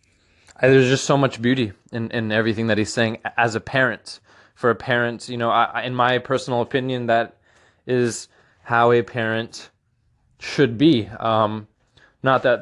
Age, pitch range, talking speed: 20-39, 105-125 Hz, 160 wpm